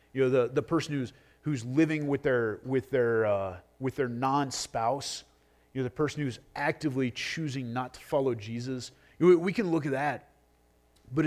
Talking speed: 190 wpm